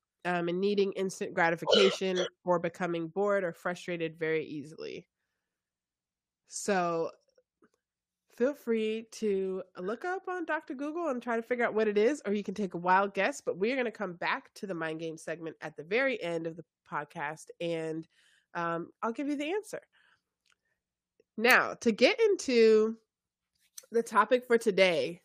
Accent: American